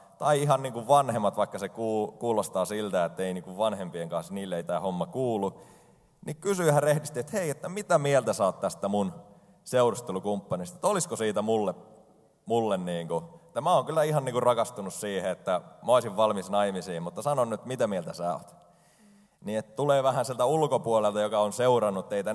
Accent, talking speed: native, 190 wpm